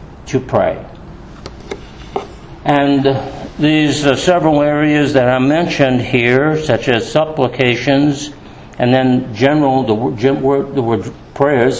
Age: 60-79